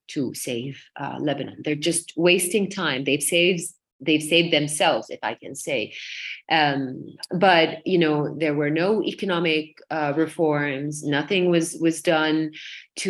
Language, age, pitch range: English, 30-49, 150-180 Hz